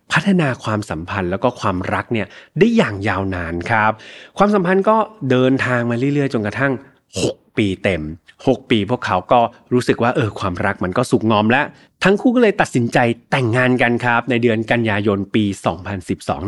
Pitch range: 105-145 Hz